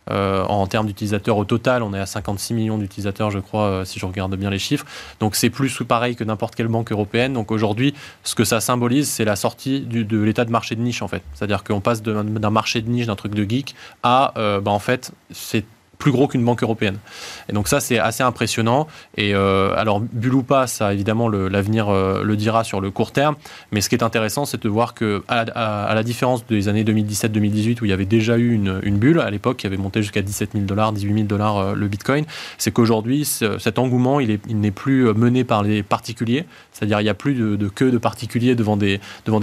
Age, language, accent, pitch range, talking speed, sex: 20-39, French, French, 105-120 Hz, 250 wpm, male